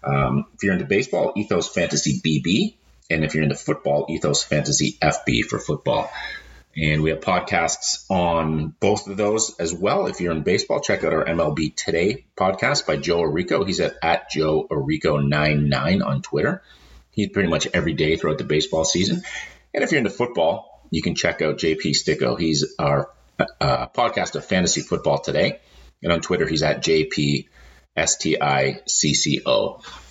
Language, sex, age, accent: English, male, 30-49, American